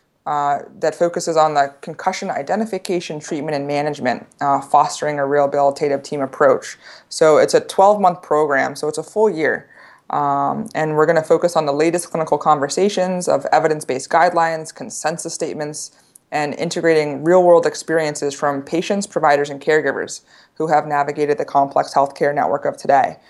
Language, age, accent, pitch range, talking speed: English, 20-39, American, 145-170 Hz, 155 wpm